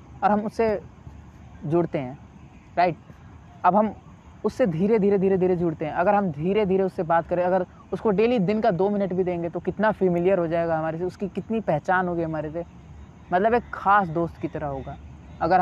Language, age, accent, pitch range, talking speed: Hindi, 20-39, native, 165-205 Hz, 200 wpm